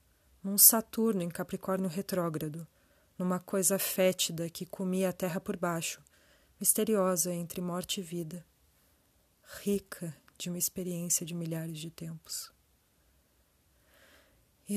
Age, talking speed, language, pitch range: 30-49, 115 wpm, Portuguese, 150-185 Hz